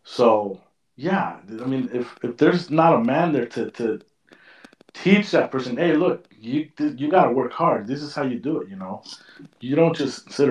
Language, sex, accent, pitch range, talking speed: English, male, American, 125-185 Hz, 200 wpm